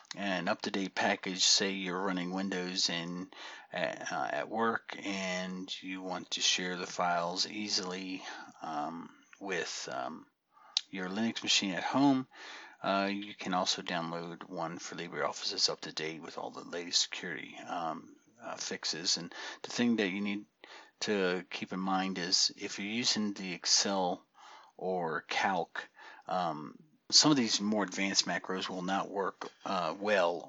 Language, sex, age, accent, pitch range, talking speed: English, male, 40-59, American, 90-105 Hz, 150 wpm